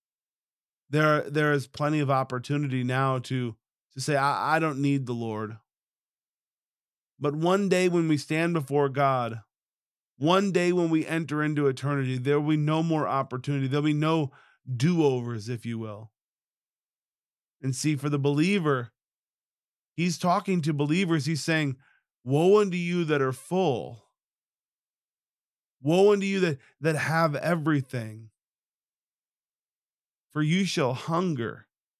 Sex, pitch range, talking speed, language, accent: male, 130-160 Hz, 135 wpm, English, American